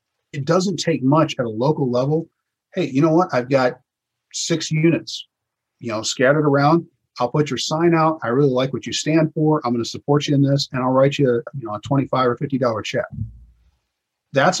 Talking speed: 215 wpm